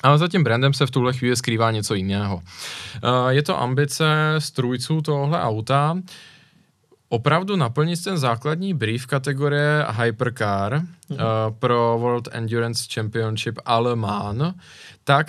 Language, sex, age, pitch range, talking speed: Czech, male, 20-39, 115-145 Hz, 120 wpm